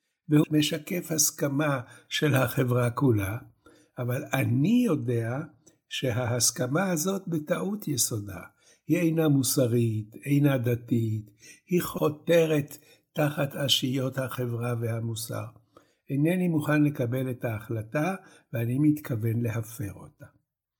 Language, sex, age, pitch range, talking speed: Hebrew, male, 60-79, 120-155 Hz, 95 wpm